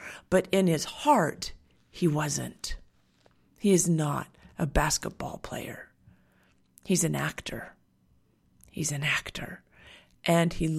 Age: 40-59